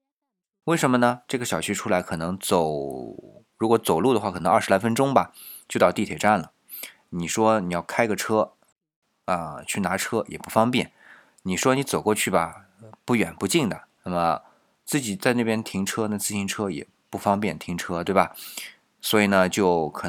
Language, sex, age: Chinese, male, 20-39